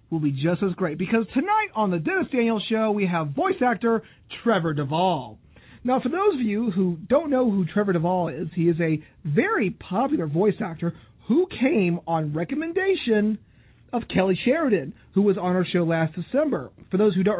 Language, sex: English, male